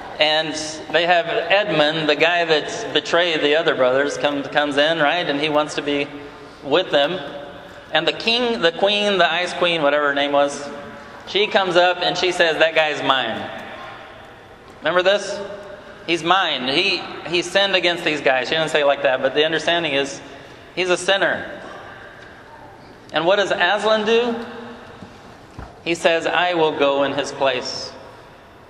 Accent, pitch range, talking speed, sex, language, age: American, 145-195 Hz, 165 wpm, male, English, 30-49